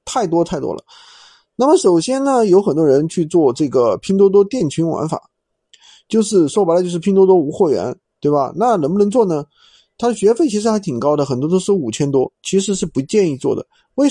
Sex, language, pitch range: male, Chinese, 160-245 Hz